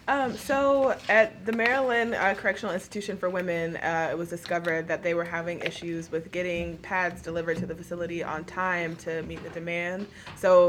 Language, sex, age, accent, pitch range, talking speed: English, female, 20-39, American, 165-185 Hz, 185 wpm